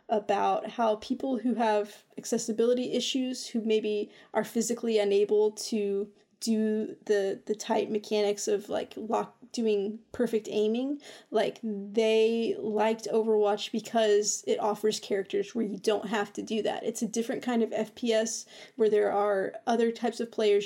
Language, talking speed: English, 150 wpm